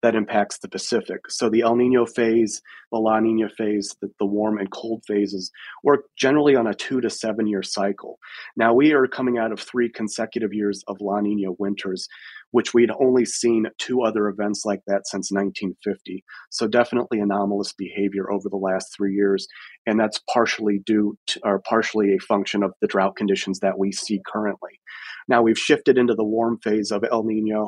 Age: 30-49